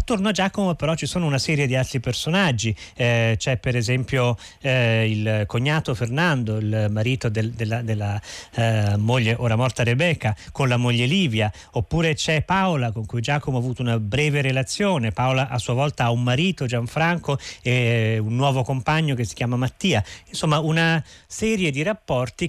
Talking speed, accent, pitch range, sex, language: 175 wpm, native, 120-165 Hz, male, Italian